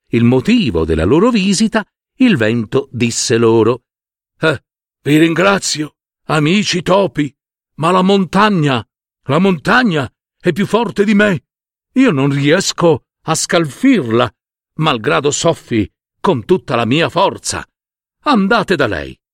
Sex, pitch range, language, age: male, 130-220 Hz, Italian, 60-79